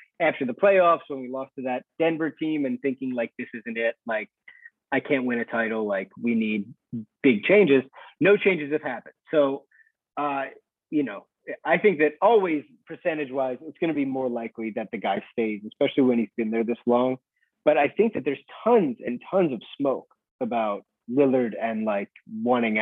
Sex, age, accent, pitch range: male, 30-49, American, 120-160 Hz